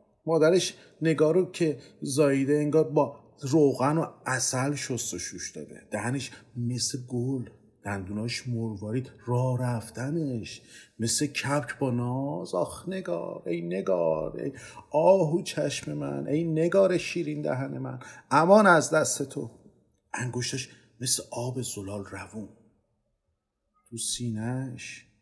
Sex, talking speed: male, 110 wpm